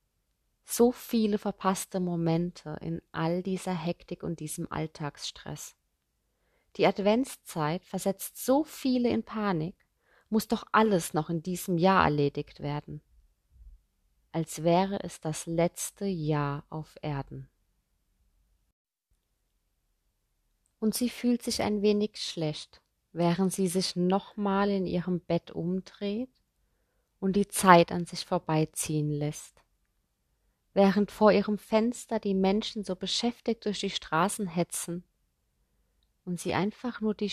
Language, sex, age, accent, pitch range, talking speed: German, female, 20-39, German, 155-210 Hz, 120 wpm